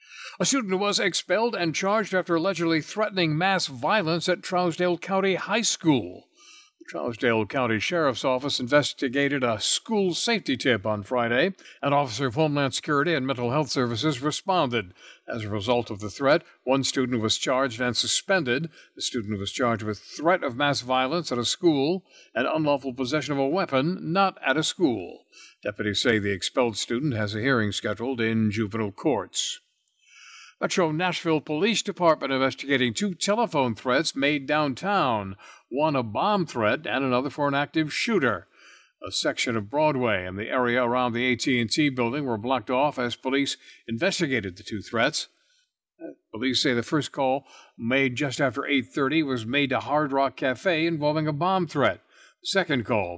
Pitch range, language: 120-165 Hz, English